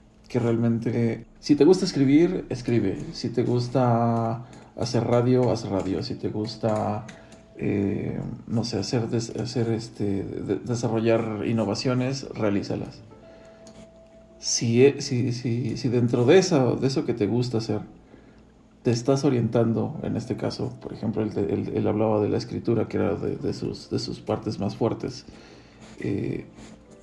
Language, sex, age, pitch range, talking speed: Spanish, male, 40-59, 110-125 Hz, 150 wpm